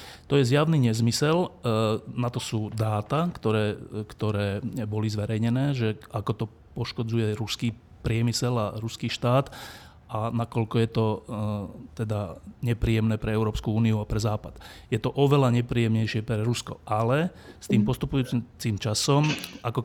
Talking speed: 135 wpm